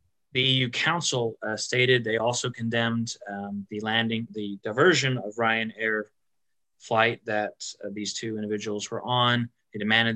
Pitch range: 105-120 Hz